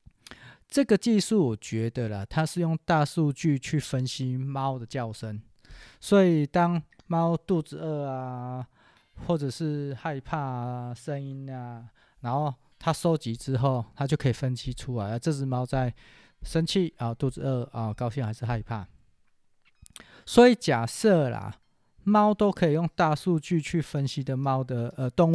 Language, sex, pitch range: Chinese, male, 120-150 Hz